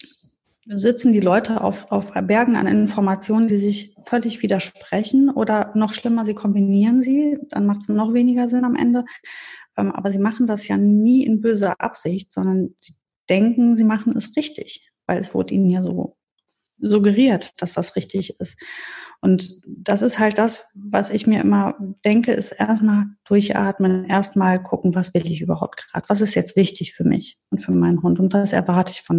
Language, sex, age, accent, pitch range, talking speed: German, female, 30-49, German, 190-225 Hz, 180 wpm